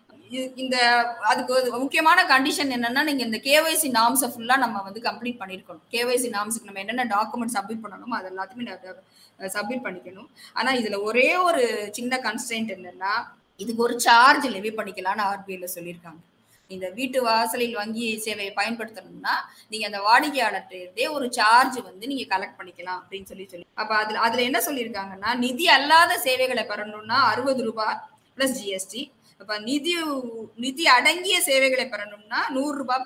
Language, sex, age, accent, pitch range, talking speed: English, female, 20-39, Indian, 205-255 Hz, 75 wpm